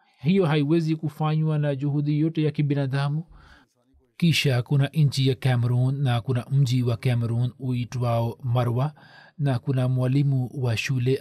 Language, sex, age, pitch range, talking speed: Swahili, male, 40-59, 130-150 Hz, 125 wpm